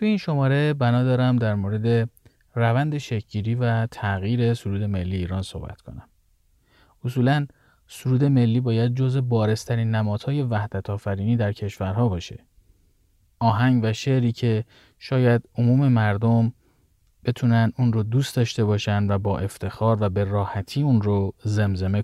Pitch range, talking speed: 105-135 Hz, 135 wpm